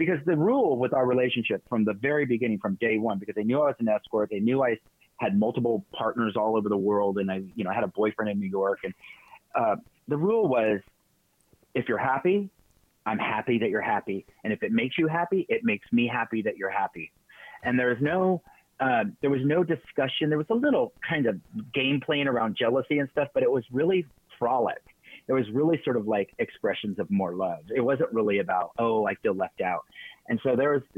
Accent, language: American, English